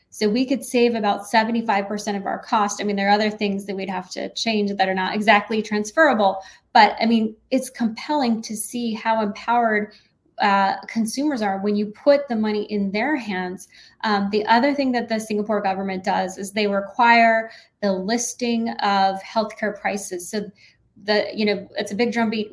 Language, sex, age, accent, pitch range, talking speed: English, female, 20-39, American, 200-230 Hz, 190 wpm